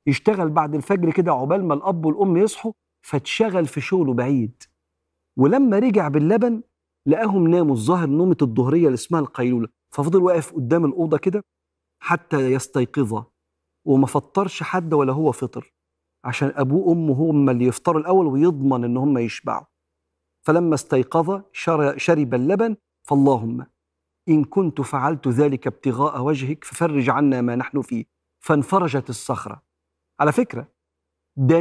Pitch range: 125-175 Hz